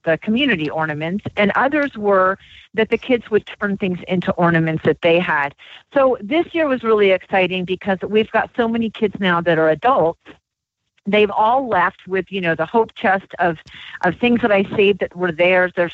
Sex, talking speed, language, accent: female, 195 wpm, English, American